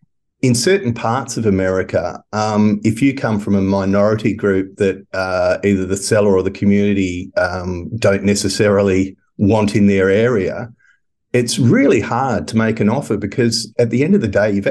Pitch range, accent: 95-110 Hz, Australian